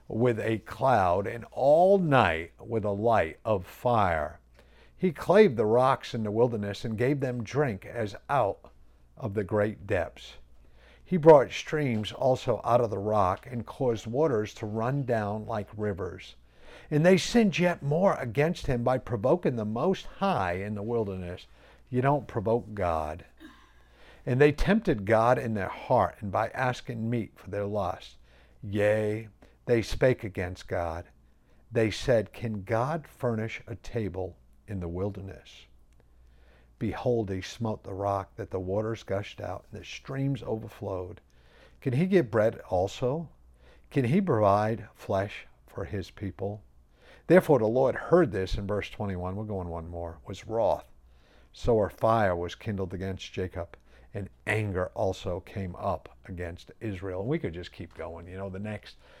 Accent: American